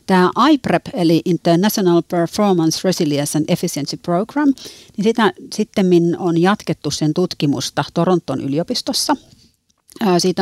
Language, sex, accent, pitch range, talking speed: Finnish, female, native, 155-185 Hz, 110 wpm